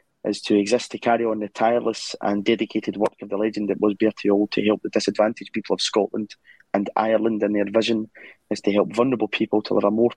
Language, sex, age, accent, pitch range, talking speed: English, male, 20-39, British, 100-115 Hz, 230 wpm